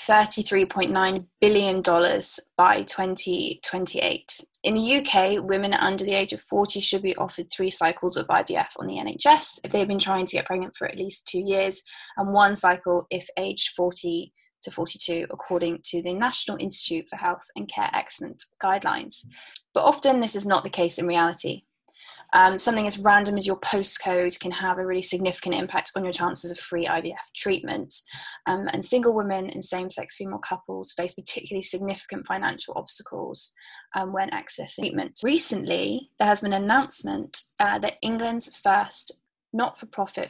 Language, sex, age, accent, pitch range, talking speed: English, female, 10-29, British, 185-210 Hz, 165 wpm